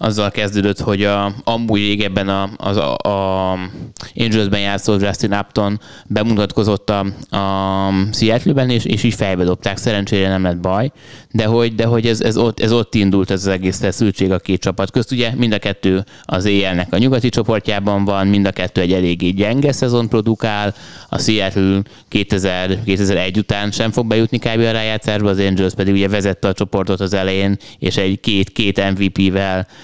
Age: 20-39